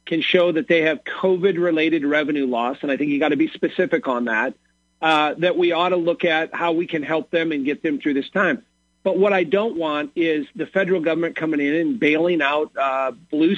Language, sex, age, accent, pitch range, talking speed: English, male, 40-59, American, 155-200 Hz, 230 wpm